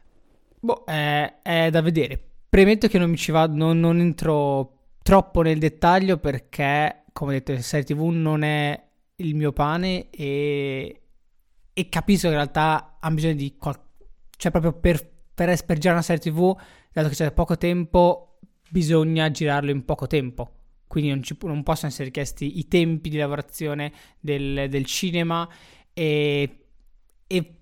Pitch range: 145-180 Hz